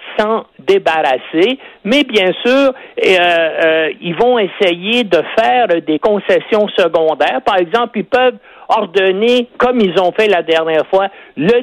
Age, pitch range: 60-79, 160-230 Hz